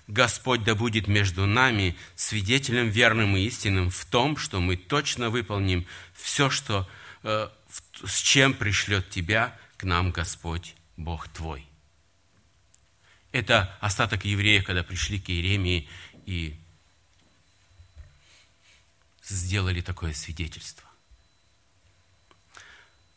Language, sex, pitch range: Russian, male, 90-110 Hz